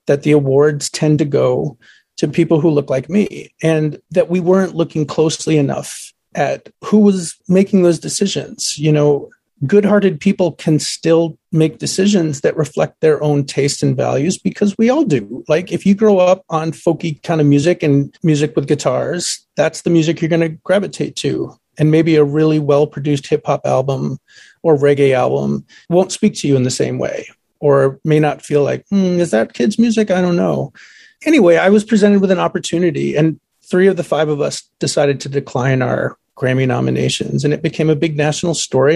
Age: 40-59